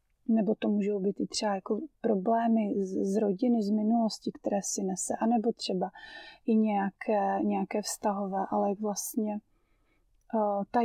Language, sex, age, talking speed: Slovak, female, 30-49, 145 wpm